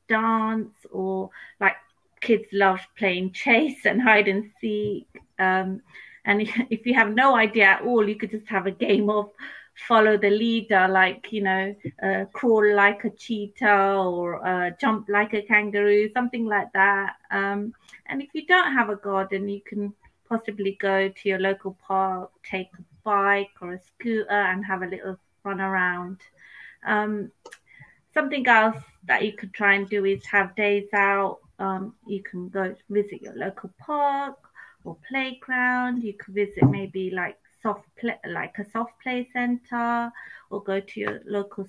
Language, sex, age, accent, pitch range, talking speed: English, female, 30-49, British, 195-225 Hz, 165 wpm